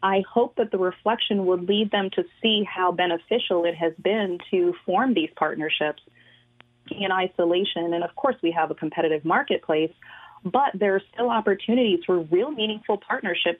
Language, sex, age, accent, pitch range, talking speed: English, female, 30-49, American, 170-210 Hz, 170 wpm